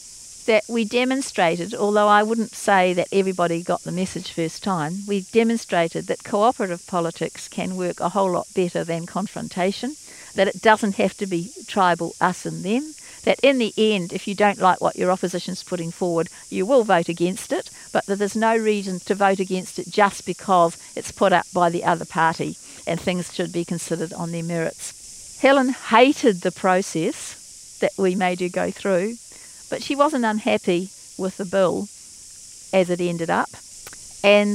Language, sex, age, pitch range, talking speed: English, female, 50-69, 175-210 Hz, 180 wpm